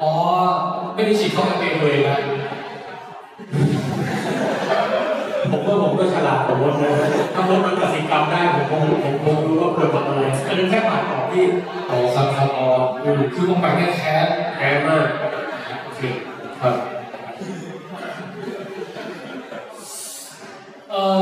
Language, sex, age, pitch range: Thai, male, 20-39, 150-195 Hz